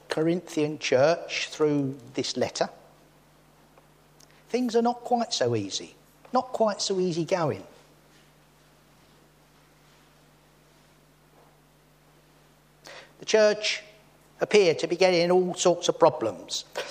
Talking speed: 90 wpm